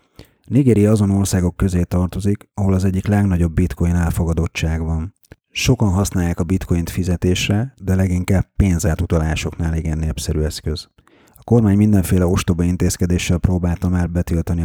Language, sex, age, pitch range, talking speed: Hungarian, male, 30-49, 85-100 Hz, 125 wpm